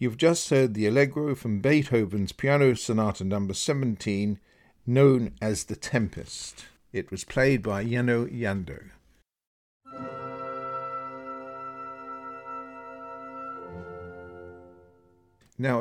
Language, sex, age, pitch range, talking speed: English, male, 50-69, 95-120 Hz, 85 wpm